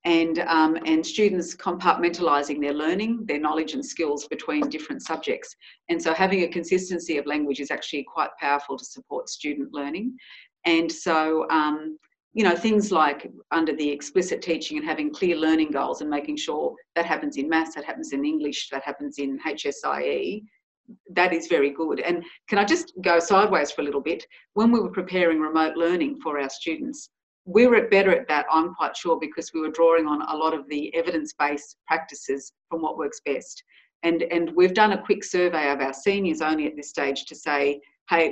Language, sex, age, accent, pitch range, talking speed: English, female, 40-59, Australian, 150-220 Hz, 190 wpm